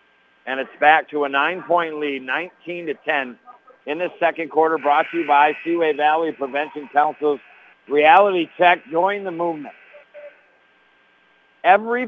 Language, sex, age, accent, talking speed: English, male, 60-79, American, 135 wpm